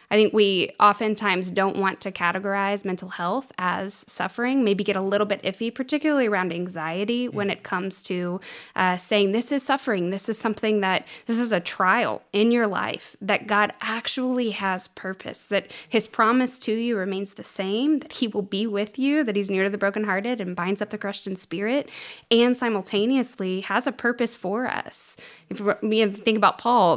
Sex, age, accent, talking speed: female, 20-39, American, 190 wpm